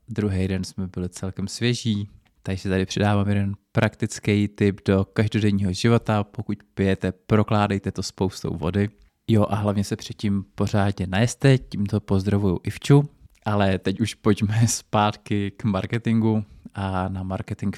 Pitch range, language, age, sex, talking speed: 95-115 Hz, Czech, 20-39, male, 140 wpm